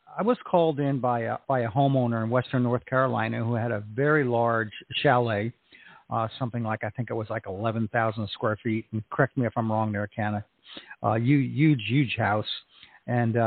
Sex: male